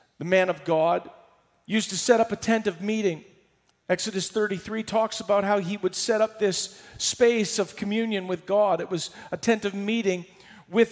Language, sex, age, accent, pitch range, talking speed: English, male, 40-59, American, 185-225 Hz, 185 wpm